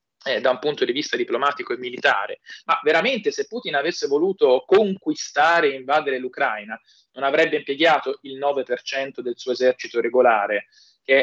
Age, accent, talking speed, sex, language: 20-39, native, 155 wpm, male, Italian